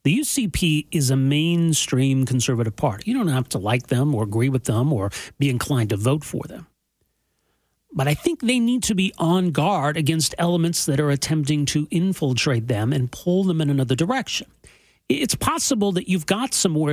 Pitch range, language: 130-175 Hz, English